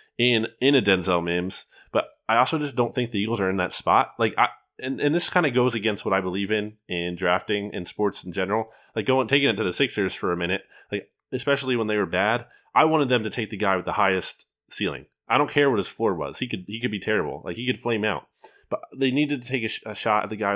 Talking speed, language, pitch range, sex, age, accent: 270 wpm, English, 100-130 Hz, male, 20-39, American